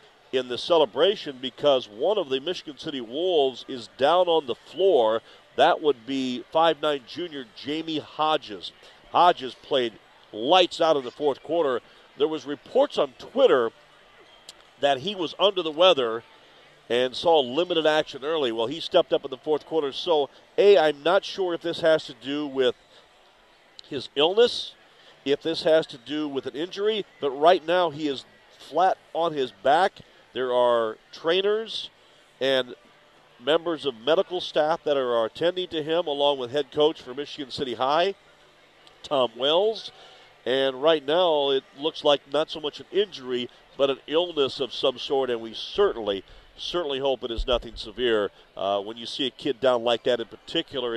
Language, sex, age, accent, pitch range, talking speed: English, male, 40-59, American, 130-170 Hz, 170 wpm